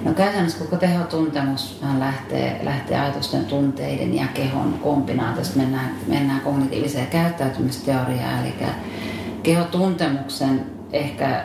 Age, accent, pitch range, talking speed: 40-59, native, 130-165 Hz, 95 wpm